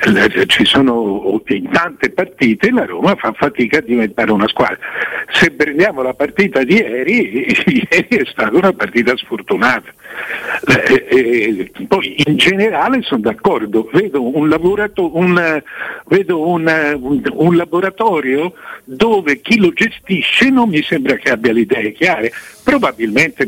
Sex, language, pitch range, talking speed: male, Italian, 135-205 Hz, 135 wpm